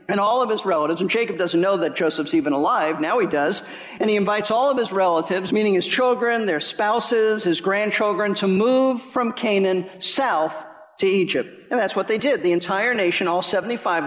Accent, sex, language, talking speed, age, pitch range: American, male, English, 200 wpm, 50-69, 175-220 Hz